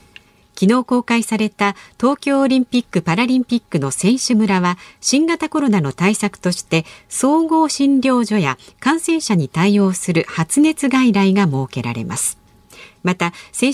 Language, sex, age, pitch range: Japanese, female, 50-69, 165-265 Hz